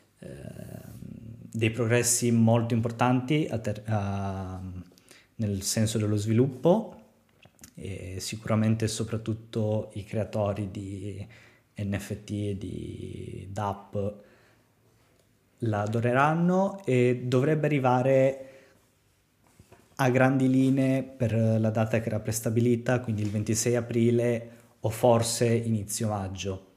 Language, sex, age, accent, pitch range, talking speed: Italian, male, 20-39, native, 105-120 Hz, 95 wpm